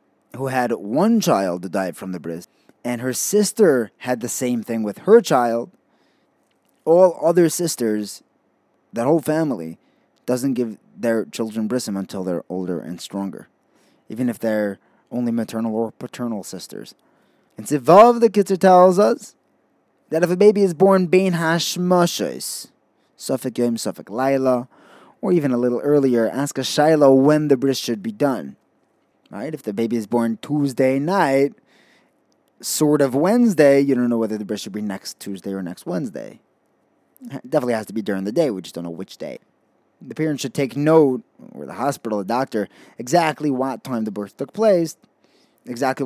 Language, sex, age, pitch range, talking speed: English, male, 20-39, 110-155 Hz, 170 wpm